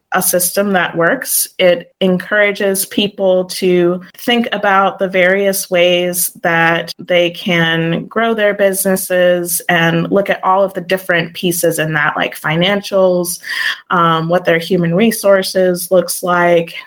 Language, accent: English, American